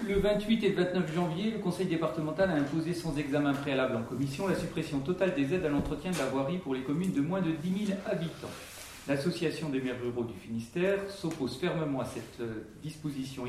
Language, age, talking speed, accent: French, 40-59, 205 wpm, French